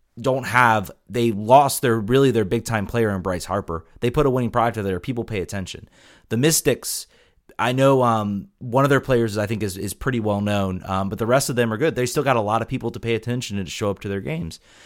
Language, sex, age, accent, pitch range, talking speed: English, male, 30-49, American, 110-140 Hz, 260 wpm